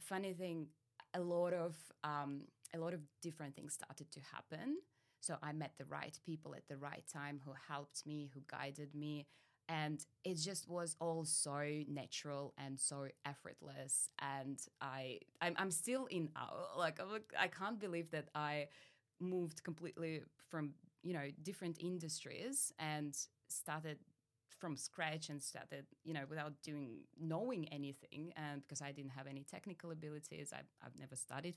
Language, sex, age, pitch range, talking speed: English, female, 20-39, 140-165 Hz, 160 wpm